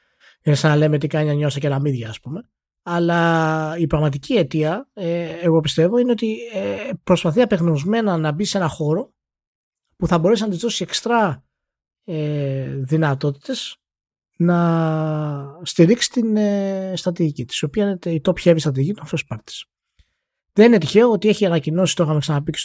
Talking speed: 165 wpm